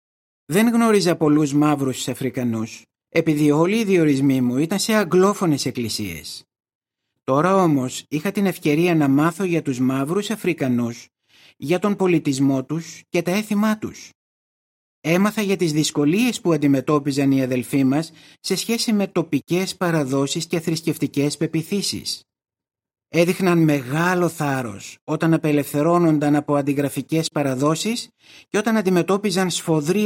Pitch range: 135-180 Hz